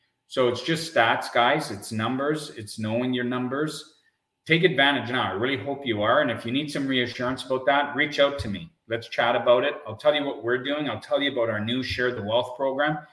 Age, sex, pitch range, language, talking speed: 40-59, male, 120-155 Hz, English, 235 wpm